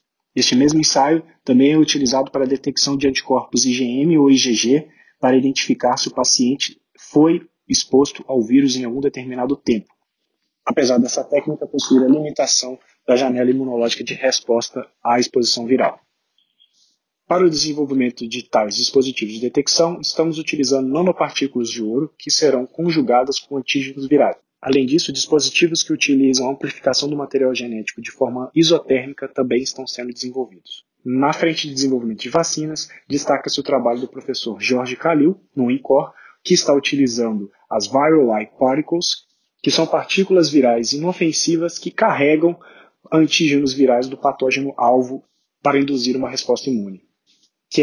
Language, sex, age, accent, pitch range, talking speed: Portuguese, male, 20-39, Brazilian, 125-155 Hz, 145 wpm